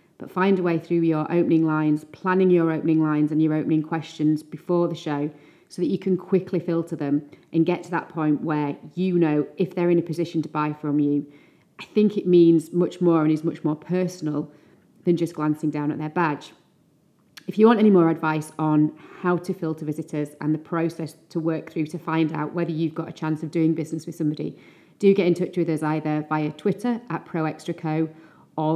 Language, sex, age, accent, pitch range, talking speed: English, female, 30-49, British, 155-175 Hz, 215 wpm